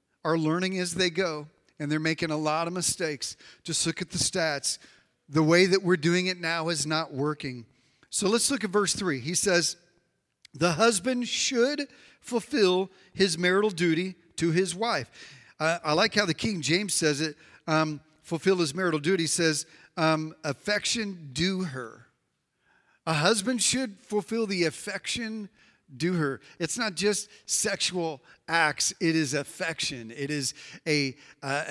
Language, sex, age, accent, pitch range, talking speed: English, male, 40-59, American, 160-205 Hz, 160 wpm